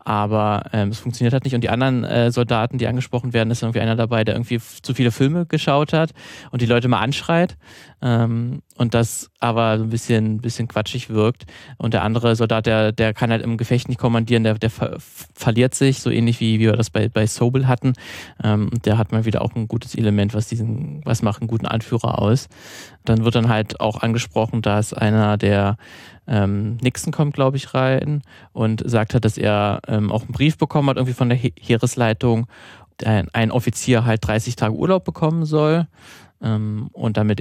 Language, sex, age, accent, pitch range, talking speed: German, male, 20-39, German, 110-125 Hz, 205 wpm